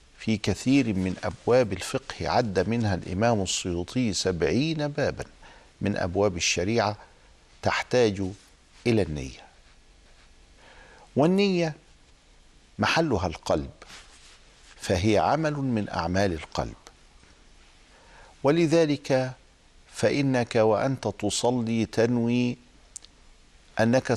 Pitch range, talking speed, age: 85-125 Hz, 75 wpm, 50-69